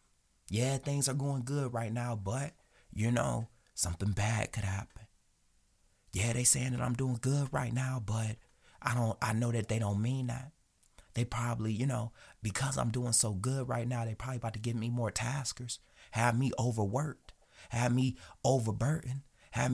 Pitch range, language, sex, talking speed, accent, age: 115-140 Hz, English, male, 180 wpm, American, 30-49